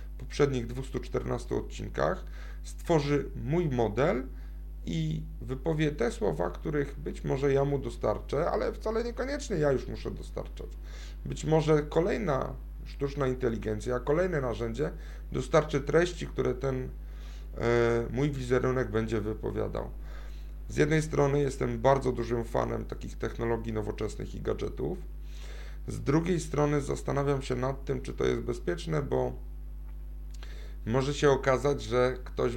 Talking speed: 125 wpm